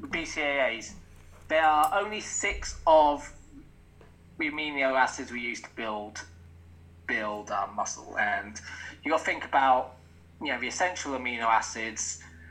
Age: 20-39